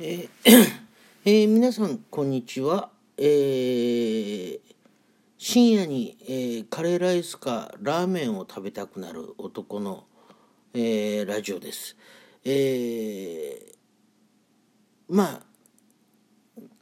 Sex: male